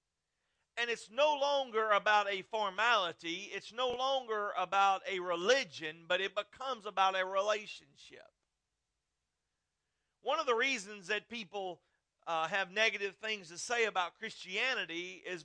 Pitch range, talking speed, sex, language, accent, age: 185-245 Hz, 130 wpm, male, English, American, 50-69